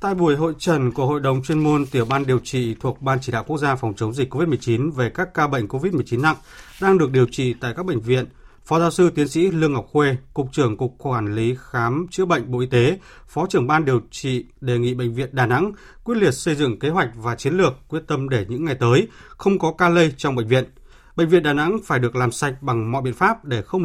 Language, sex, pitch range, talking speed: Vietnamese, male, 125-160 Hz, 260 wpm